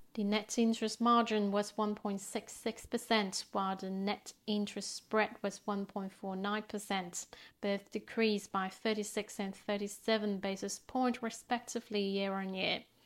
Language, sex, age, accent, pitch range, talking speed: English, female, 30-49, British, 205-240 Hz, 105 wpm